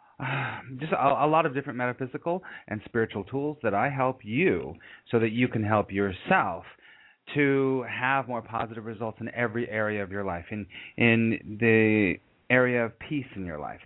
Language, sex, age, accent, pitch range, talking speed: English, male, 40-59, American, 105-125 Hz, 175 wpm